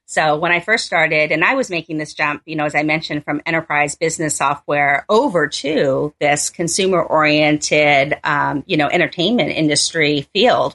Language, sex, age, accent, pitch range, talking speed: English, female, 40-59, American, 150-175 Hz, 175 wpm